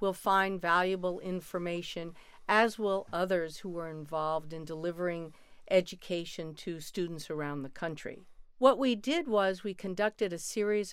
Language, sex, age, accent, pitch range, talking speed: English, female, 50-69, American, 170-210 Hz, 145 wpm